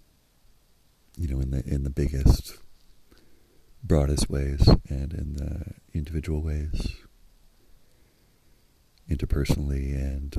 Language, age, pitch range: English, 40-59, 70-80 Hz